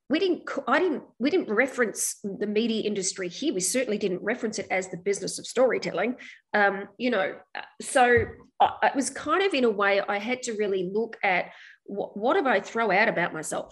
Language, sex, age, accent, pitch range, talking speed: English, female, 30-49, Australian, 195-255 Hz, 200 wpm